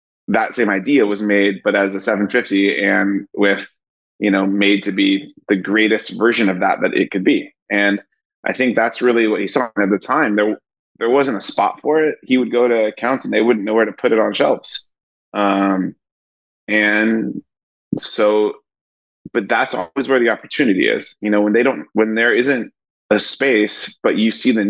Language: English